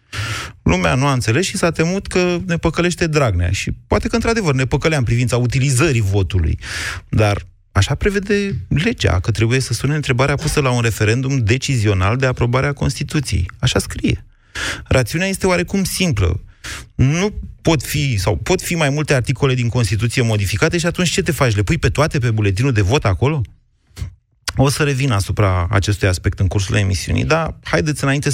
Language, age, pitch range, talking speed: Romanian, 30-49, 95-135 Hz, 175 wpm